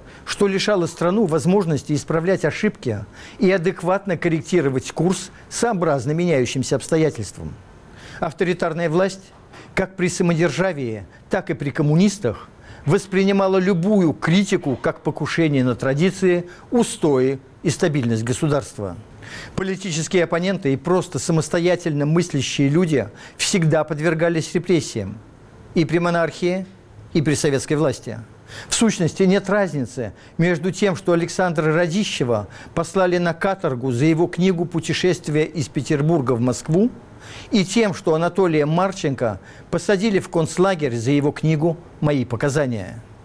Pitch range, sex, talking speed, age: 135-185 Hz, male, 115 wpm, 50-69